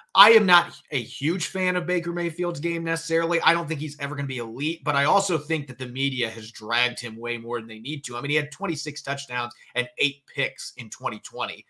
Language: English